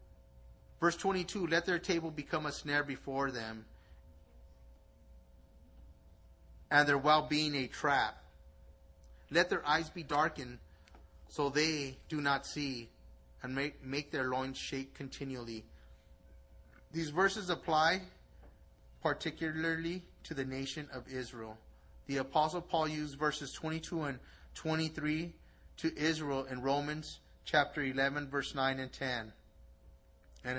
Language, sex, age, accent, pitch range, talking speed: English, male, 30-49, American, 110-155 Hz, 120 wpm